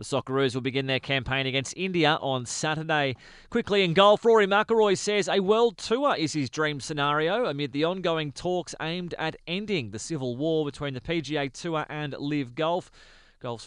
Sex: male